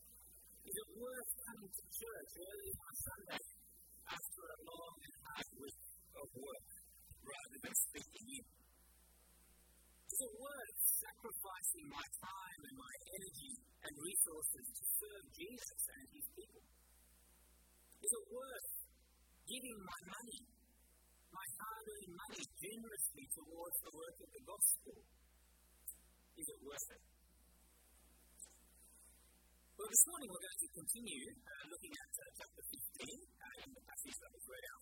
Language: English